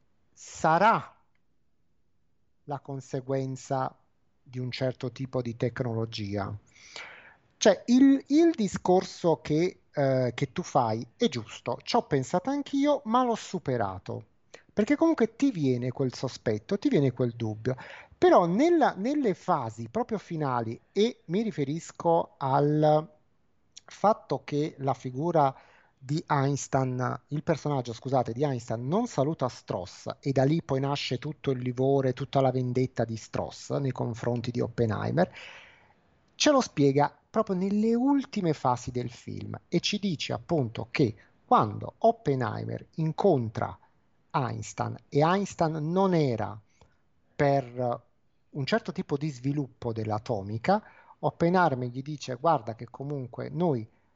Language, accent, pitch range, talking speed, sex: Italian, native, 125-175 Hz, 125 wpm, male